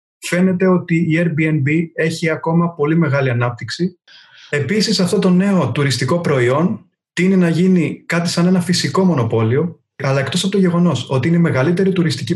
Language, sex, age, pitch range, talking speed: Greek, male, 30-49, 140-180 Hz, 160 wpm